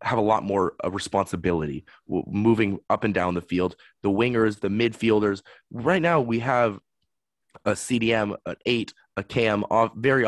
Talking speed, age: 160 wpm, 20-39